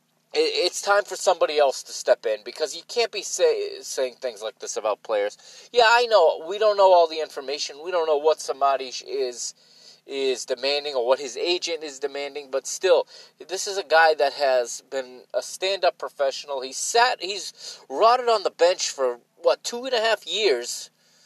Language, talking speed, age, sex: English, 190 wpm, 30-49, male